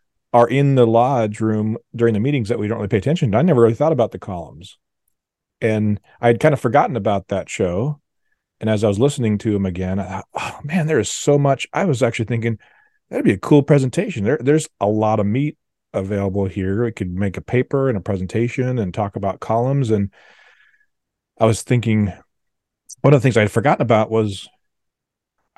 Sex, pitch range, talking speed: male, 95-120 Hz, 210 wpm